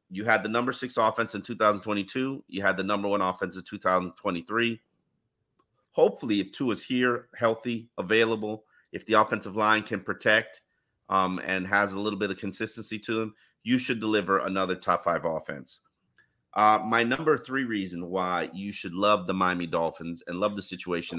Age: 30-49